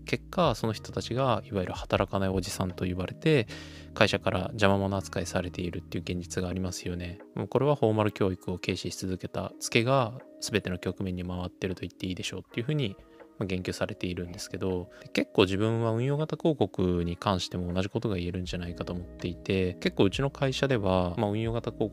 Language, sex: Japanese, male